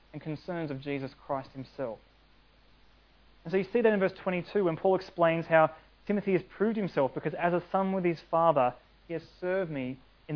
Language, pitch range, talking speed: English, 140-180 Hz, 195 wpm